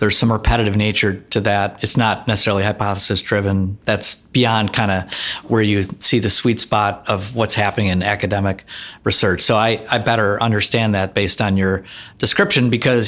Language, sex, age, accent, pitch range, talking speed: English, male, 30-49, American, 105-125 Hz, 175 wpm